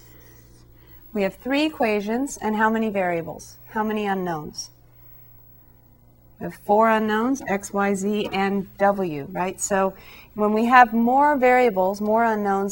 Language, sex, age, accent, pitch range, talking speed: English, female, 40-59, American, 170-210 Hz, 135 wpm